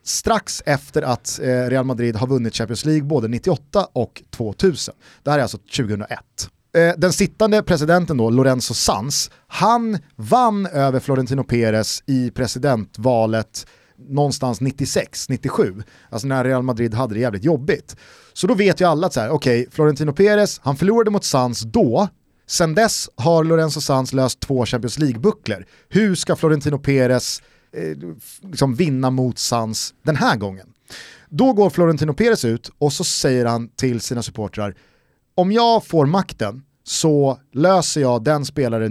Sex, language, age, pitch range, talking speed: male, Swedish, 30-49, 115-170 Hz, 155 wpm